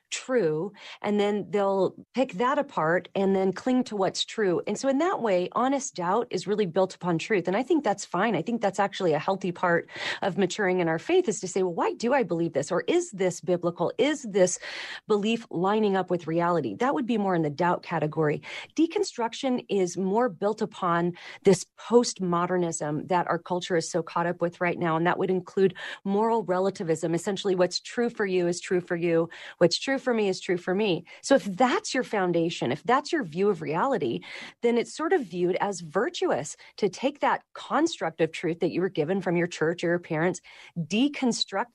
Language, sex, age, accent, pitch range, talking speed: English, female, 40-59, American, 175-230 Hz, 210 wpm